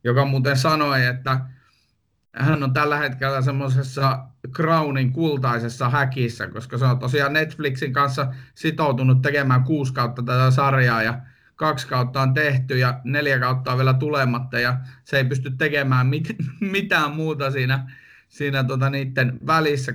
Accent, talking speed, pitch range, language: native, 145 wpm, 130-150 Hz, Finnish